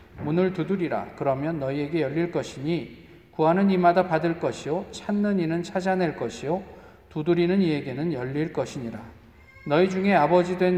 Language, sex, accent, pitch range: Korean, male, native, 120-175 Hz